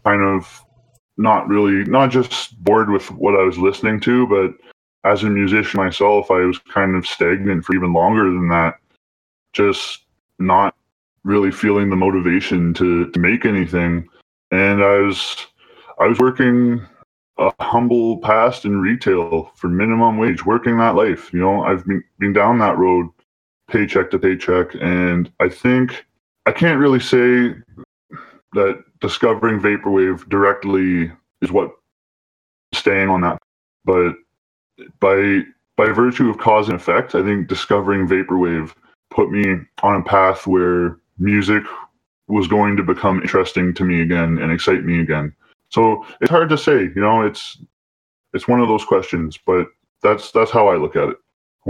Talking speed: 155 wpm